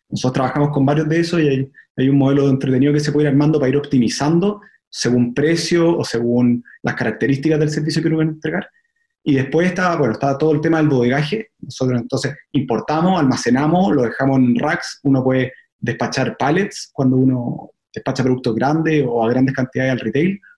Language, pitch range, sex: Spanish, 130-155 Hz, male